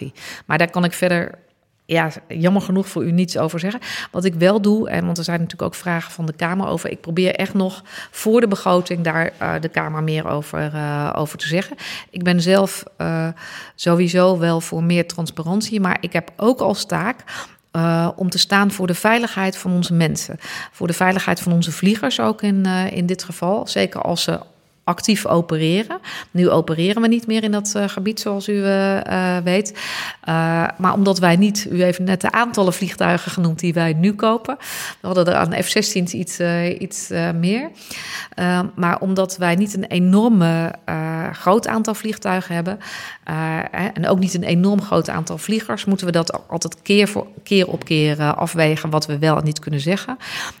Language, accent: Dutch, Dutch